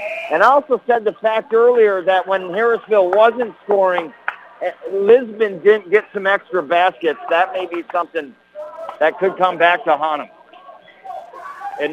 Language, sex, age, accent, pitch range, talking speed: English, male, 50-69, American, 185-245 Hz, 150 wpm